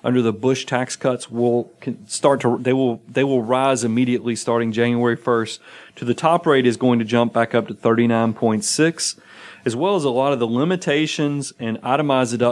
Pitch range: 115-140 Hz